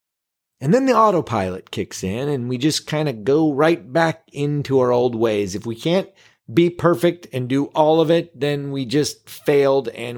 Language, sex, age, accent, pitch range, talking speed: English, male, 30-49, American, 120-180 Hz, 195 wpm